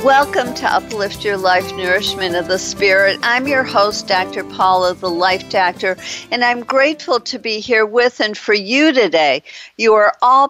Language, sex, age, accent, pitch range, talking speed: English, female, 50-69, American, 180-245 Hz, 175 wpm